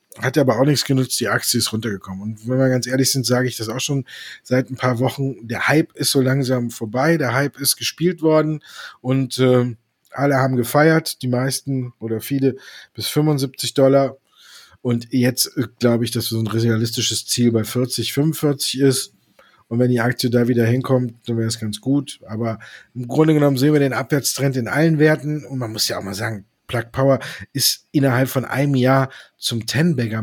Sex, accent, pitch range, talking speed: male, German, 115-140 Hz, 200 wpm